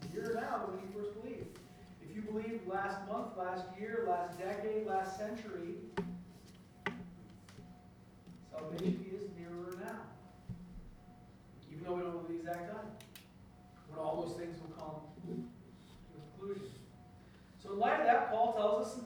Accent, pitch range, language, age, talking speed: American, 185-235 Hz, English, 40-59, 140 wpm